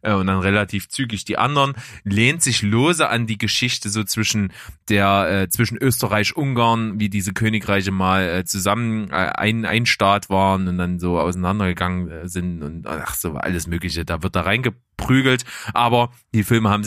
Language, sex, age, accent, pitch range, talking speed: German, male, 20-39, German, 90-110 Hz, 165 wpm